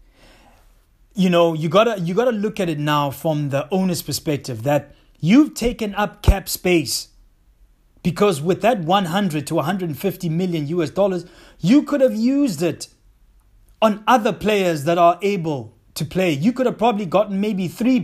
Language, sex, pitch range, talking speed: English, male, 150-200 Hz, 170 wpm